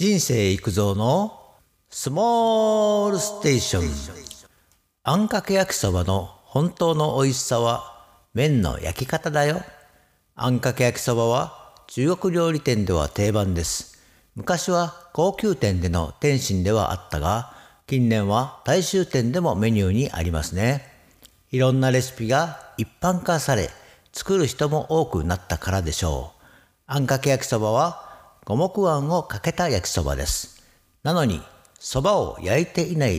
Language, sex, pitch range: Japanese, male, 100-150 Hz